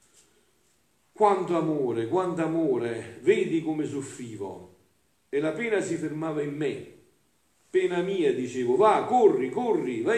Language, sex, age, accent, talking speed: Italian, male, 50-69, native, 125 wpm